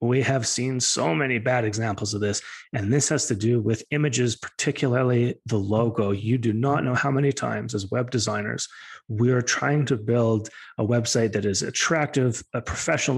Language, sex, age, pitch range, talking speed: English, male, 30-49, 115-140 Hz, 185 wpm